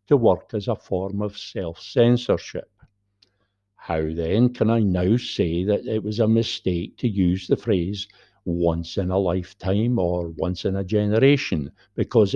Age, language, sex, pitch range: 60-79, English, male, 95-110 Hz